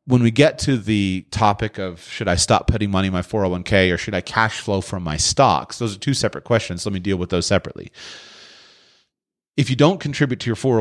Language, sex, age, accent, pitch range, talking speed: English, male, 30-49, American, 95-120 Hz, 220 wpm